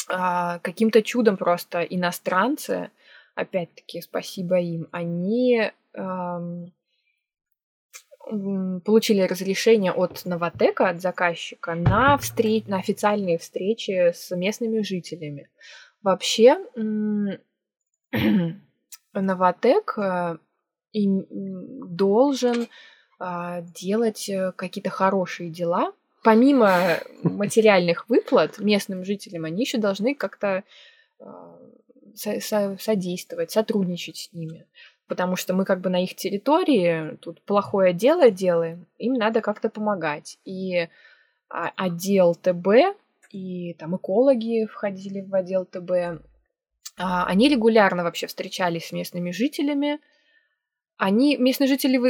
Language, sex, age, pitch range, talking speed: Russian, female, 20-39, 180-230 Hz, 90 wpm